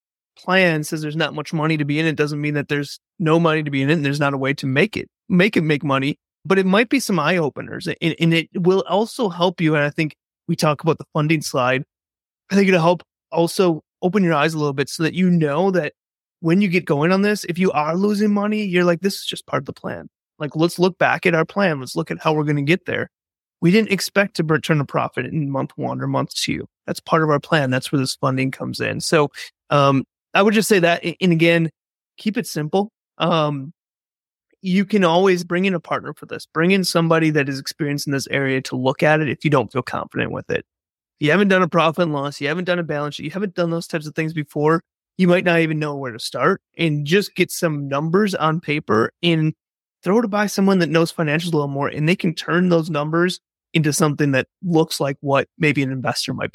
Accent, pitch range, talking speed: American, 145-180 Hz, 250 wpm